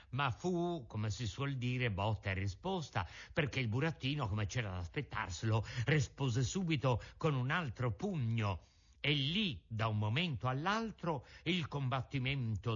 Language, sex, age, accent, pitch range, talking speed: Italian, male, 60-79, native, 115-175 Hz, 140 wpm